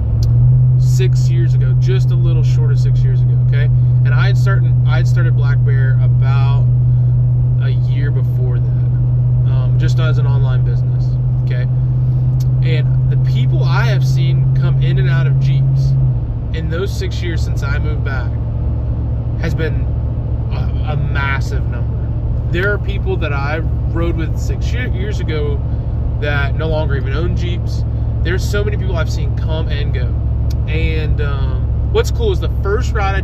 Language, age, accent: English, 20-39, American